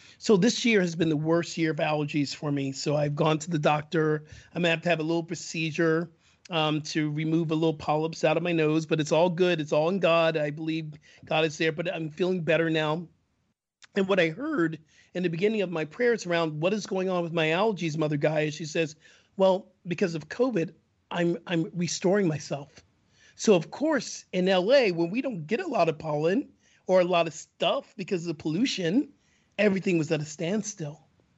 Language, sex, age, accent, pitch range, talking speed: English, male, 40-59, American, 155-190 Hz, 215 wpm